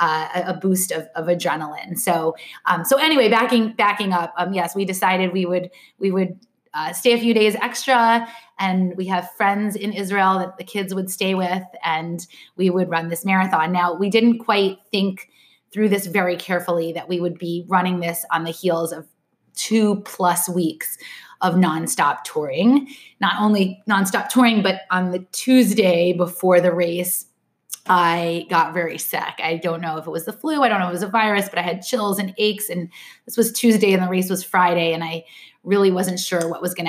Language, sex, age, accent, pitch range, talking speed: English, female, 20-39, American, 170-200 Hz, 200 wpm